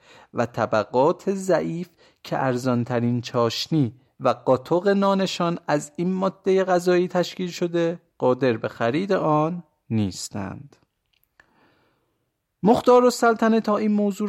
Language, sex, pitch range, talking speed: Persian, male, 130-190 Hz, 105 wpm